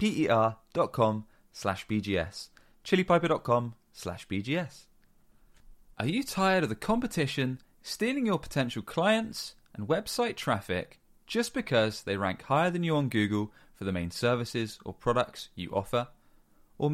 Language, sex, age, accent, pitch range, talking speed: English, male, 20-39, British, 100-155 Hz, 130 wpm